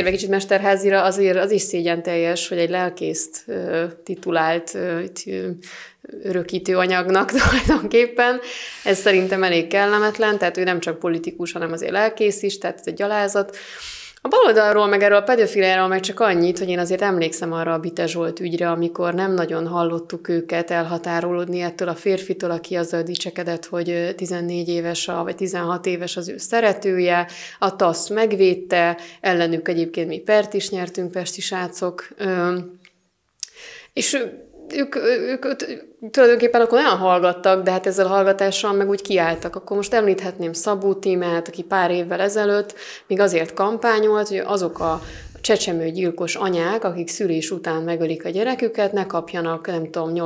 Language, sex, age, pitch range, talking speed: Hungarian, female, 30-49, 170-200 Hz, 160 wpm